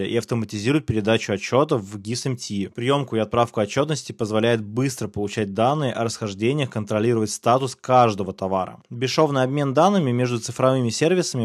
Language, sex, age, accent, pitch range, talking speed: Russian, male, 20-39, native, 110-130 Hz, 135 wpm